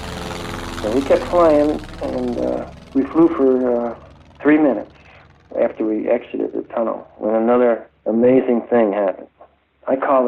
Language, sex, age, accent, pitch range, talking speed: English, male, 60-79, American, 105-125 Hz, 140 wpm